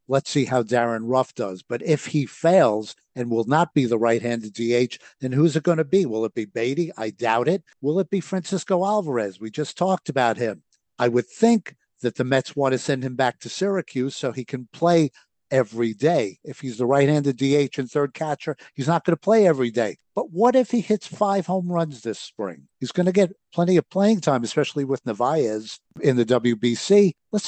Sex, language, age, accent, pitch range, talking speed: male, English, 60-79, American, 125-160 Hz, 215 wpm